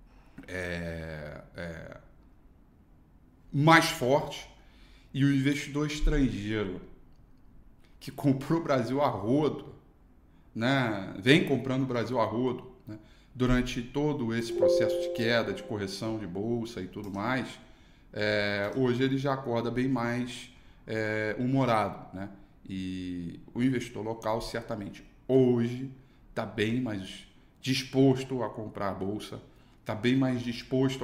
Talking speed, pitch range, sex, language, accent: 120 wpm, 100-125 Hz, male, Portuguese, Brazilian